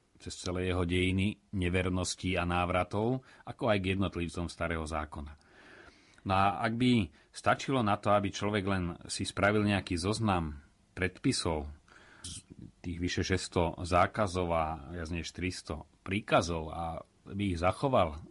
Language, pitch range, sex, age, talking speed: Slovak, 90-105 Hz, male, 40-59, 130 wpm